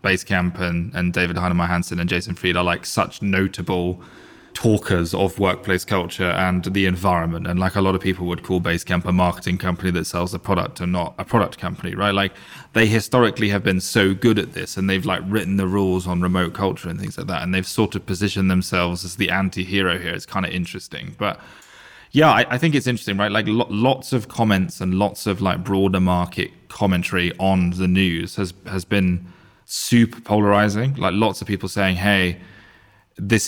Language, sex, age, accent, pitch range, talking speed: English, male, 20-39, British, 90-100 Hz, 200 wpm